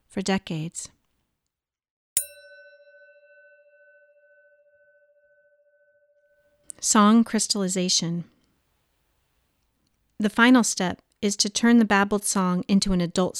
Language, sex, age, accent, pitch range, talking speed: English, female, 40-59, American, 175-210 Hz, 70 wpm